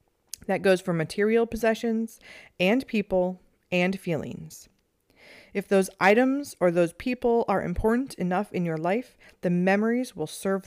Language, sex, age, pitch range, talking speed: English, female, 30-49, 170-220 Hz, 140 wpm